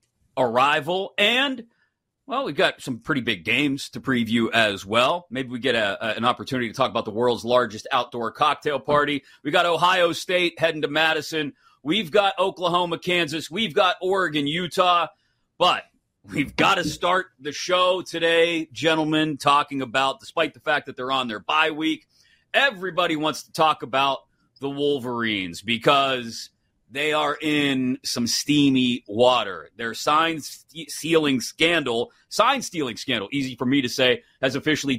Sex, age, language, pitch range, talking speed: male, 30-49, English, 130-170 Hz, 155 wpm